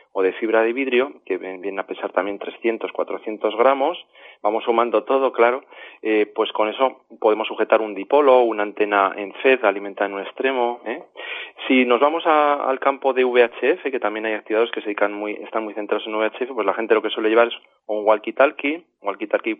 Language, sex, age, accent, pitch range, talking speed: Spanish, male, 30-49, Spanish, 105-130 Hz, 200 wpm